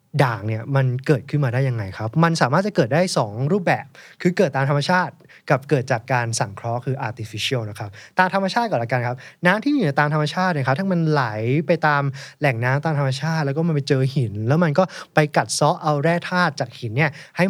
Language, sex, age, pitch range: Thai, male, 20-39, 125-170 Hz